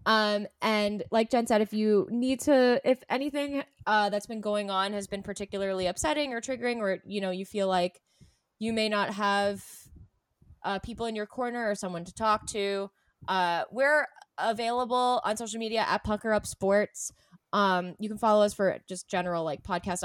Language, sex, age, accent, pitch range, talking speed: English, female, 20-39, American, 180-215 Hz, 185 wpm